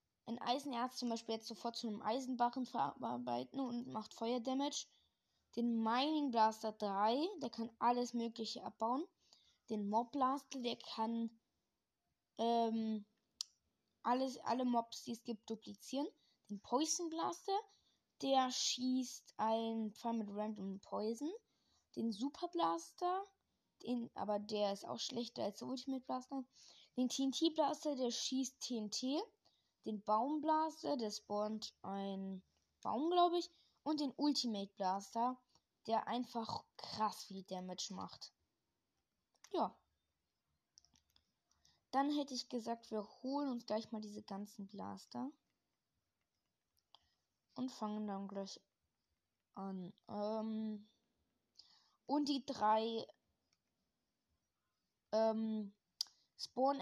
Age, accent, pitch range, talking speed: 20-39, German, 215-265 Hz, 110 wpm